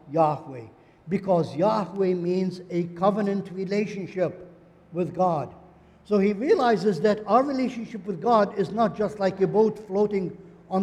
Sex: male